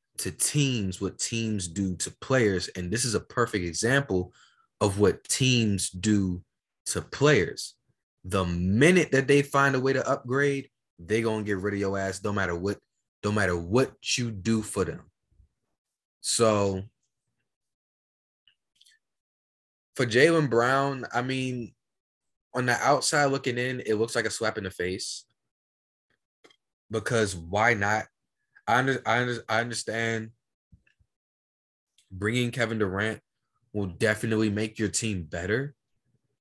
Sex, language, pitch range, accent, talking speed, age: male, English, 95-120 Hz, American, 130 wpm, 20-39